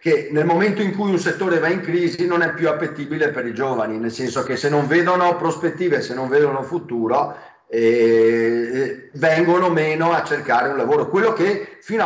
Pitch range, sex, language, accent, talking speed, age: 120-170 Hz, male, Italian, native, 190 wpm, 40-59